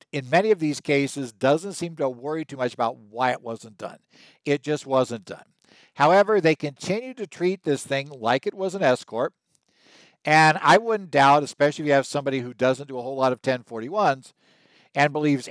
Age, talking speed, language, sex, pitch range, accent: 60-79, 195 wpm, English, male, 130-155 Hz, American